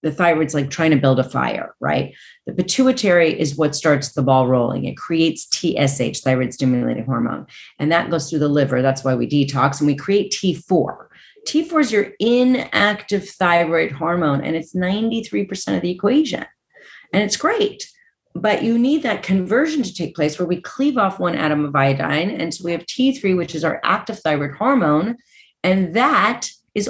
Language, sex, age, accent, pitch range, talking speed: English, female, 30-49, American, 155-230 Hz, 185 wpm